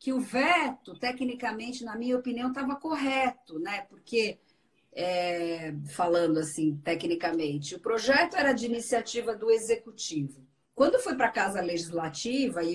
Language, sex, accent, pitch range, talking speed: Portuguese, female, Brazilian, 185-280 Hz, 135 wpm